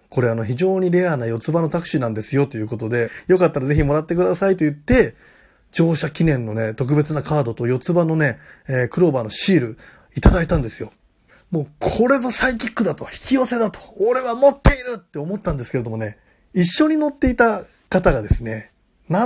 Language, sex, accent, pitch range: Japanese, male, native, 125-190 Hz